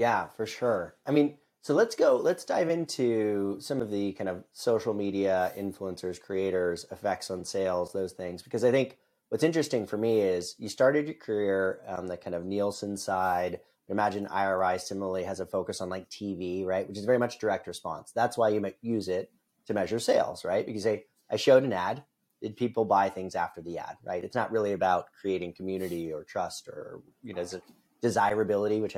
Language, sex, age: English, male, 30-49